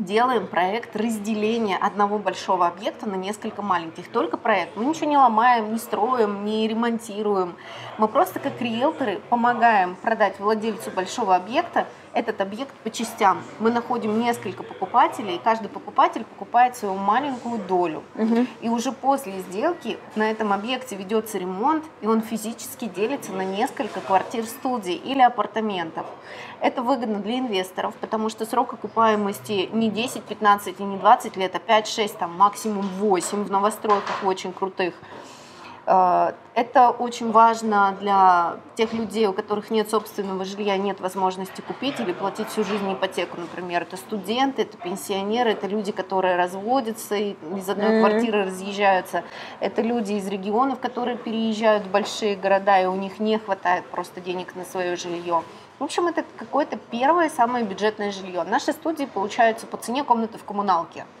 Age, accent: 20-39, native